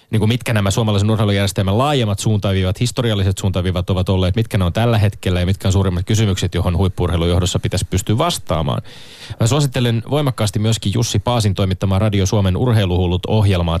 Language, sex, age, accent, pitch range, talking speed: Finnish, male, 30-49, native, 95-115 Hz, 165 wpm